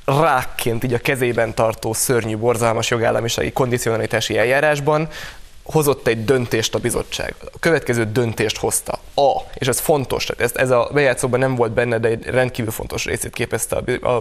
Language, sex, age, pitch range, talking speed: Hungarian, male, 20-39, 115-130 Hz, 150 wpm